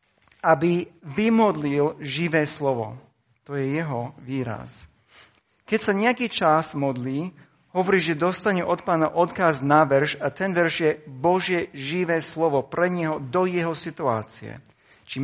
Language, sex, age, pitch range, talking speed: Slovak, male, 50-69, 130-165 Hz, 135 wpm